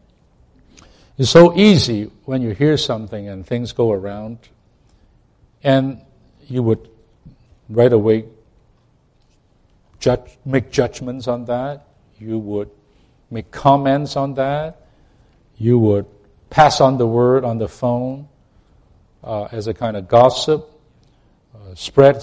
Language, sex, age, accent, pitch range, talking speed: English, male, 50-69, American, 105-140 Hz, 115 wpm